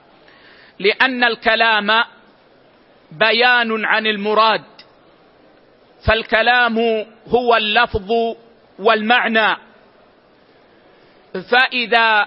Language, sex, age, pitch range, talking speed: Arabic, male, 50-69, 215-240 Hz, 50 wpm